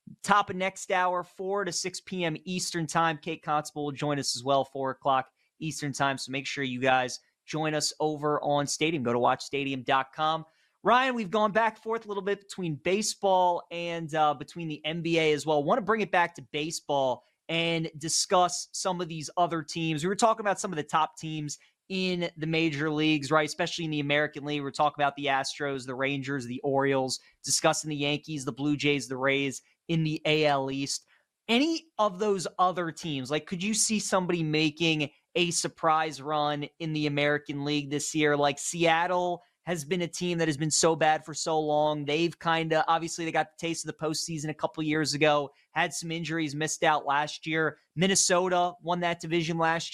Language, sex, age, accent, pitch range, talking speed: English, male, 20-39, American, 150-175 Hz, 200 wpm